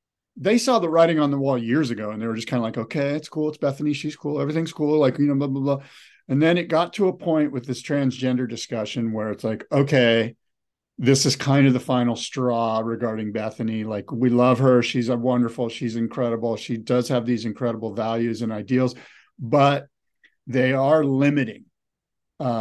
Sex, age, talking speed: male, 50-69, 205 wpm